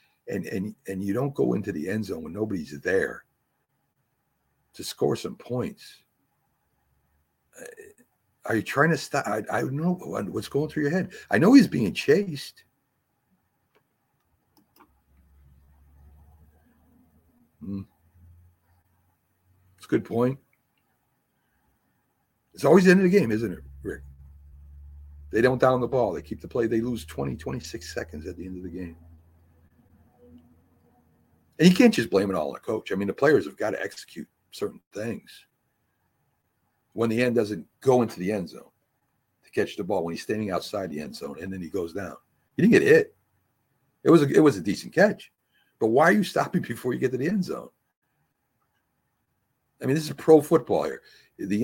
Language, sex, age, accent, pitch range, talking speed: English, male, 60-79, American, 80-130 Hz, 170 wpm